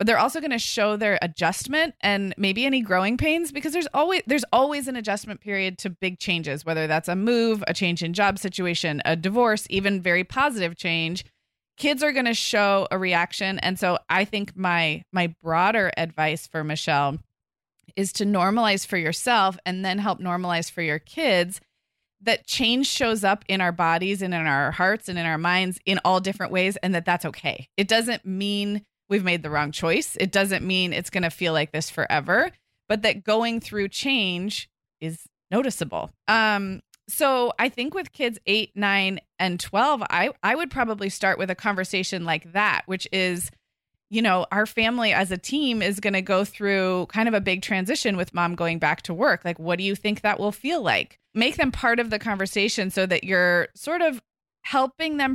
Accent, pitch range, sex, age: American, 175-220 Hz, female, 20-39